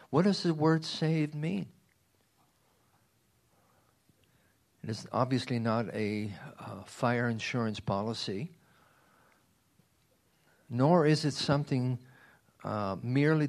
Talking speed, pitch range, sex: 90 wpm, 110-145 Hz, male